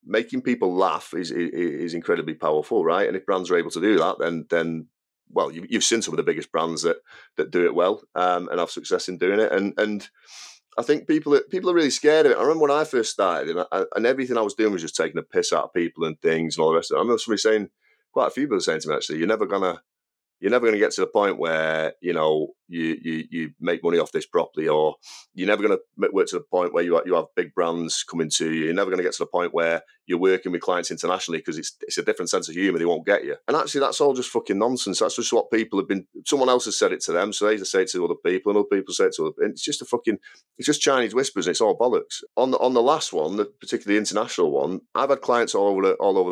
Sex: male